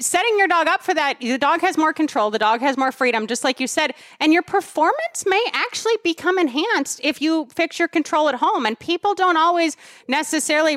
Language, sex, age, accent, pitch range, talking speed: English, female, 30-49, American, 250-340 Hz, 215 wpm